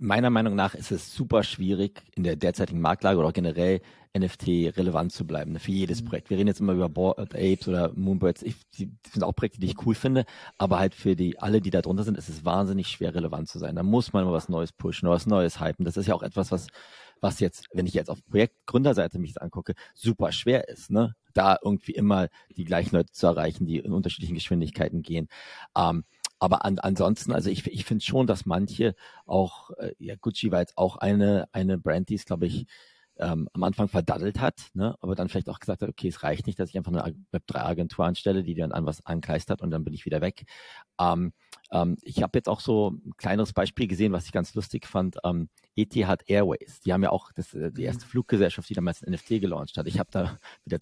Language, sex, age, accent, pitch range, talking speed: German, male, 40-59, German, 90-110 Hz, 230 wpm